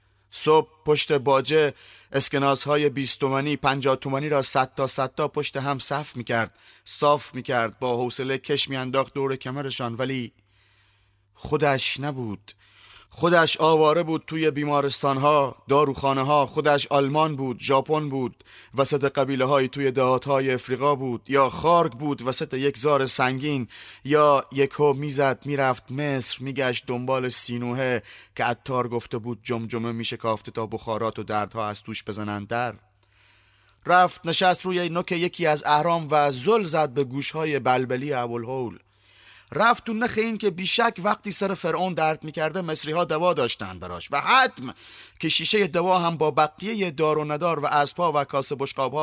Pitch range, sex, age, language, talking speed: 125-150 Hz, male, 30-49, Persian, 150 wpm